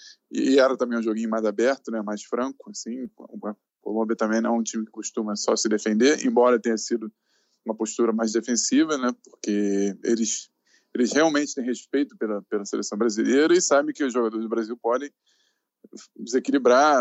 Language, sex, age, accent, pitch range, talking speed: Portuguese, male, 20-39, Brazilian, 110-145 Hz, 175 wpm